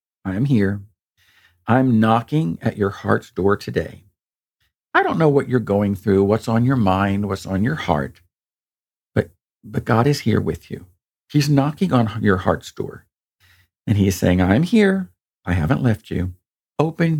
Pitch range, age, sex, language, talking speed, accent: 95-135 Hz, 50-69, male, English, 170 wpm, American